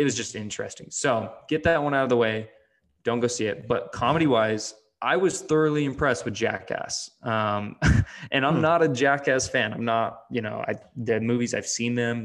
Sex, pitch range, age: male, 110-125 Hz, 20-39